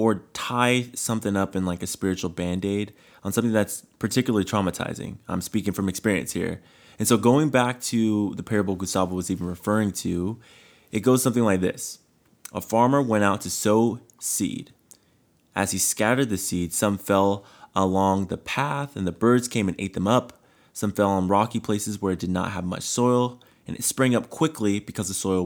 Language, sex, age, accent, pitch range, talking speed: English, male, 20-39, American, 90-115 Hz, 190 wpm